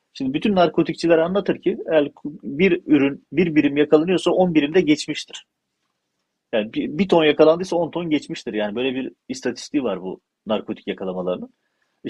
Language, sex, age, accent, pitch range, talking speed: Turkish, male, 40-59, native, 130-180 Hz, 160 wpm